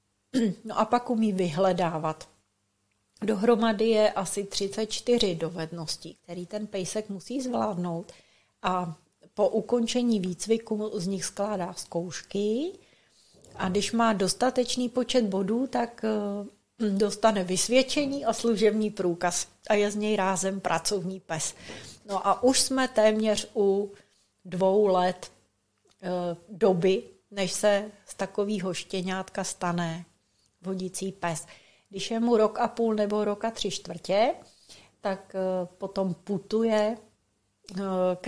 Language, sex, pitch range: Czech, female, 185-220 Hz